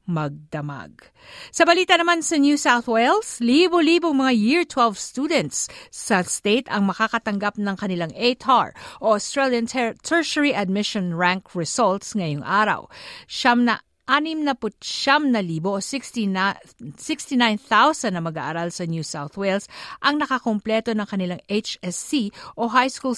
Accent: native